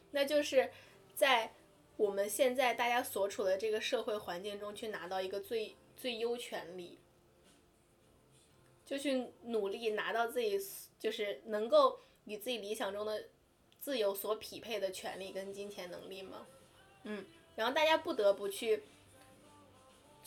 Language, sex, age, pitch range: Chinese, female, 20-39, 200-280 Hz